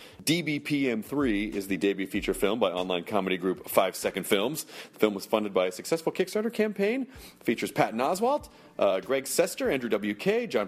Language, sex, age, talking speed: English, male, 40-59, 180 wpm